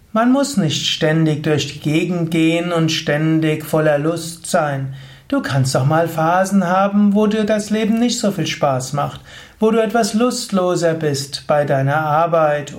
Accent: German